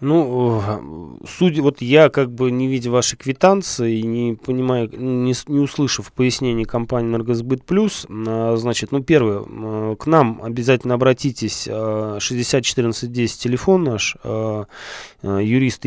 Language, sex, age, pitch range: Russian, male, 20-39, 110-140 Hz